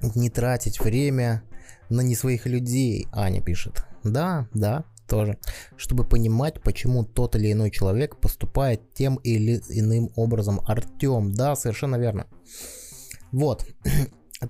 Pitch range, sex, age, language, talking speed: 110-135 Hz, male, 20-39, Russian, 125 wpm